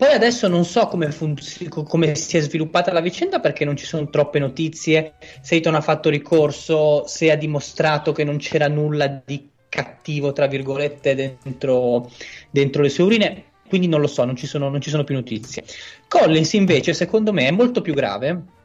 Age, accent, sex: 20-39, native, male